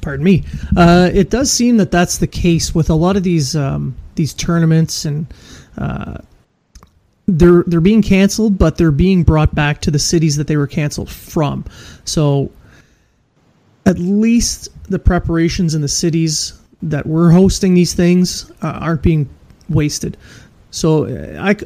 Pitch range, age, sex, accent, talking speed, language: 150-190 Hz, 30-49, male, American, 155 wpm, English